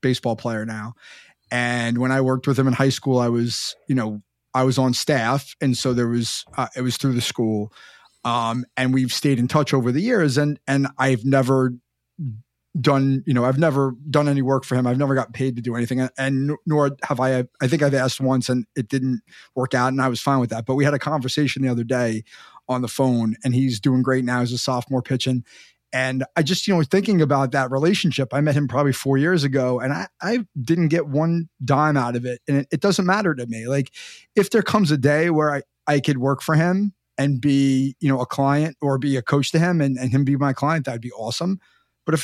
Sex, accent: male, American